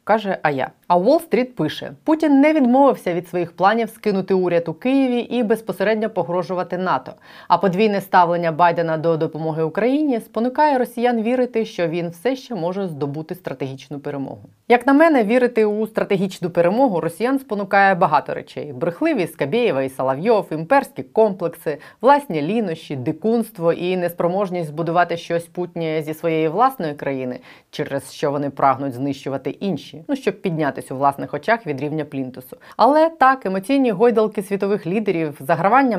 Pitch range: 160-220 Hz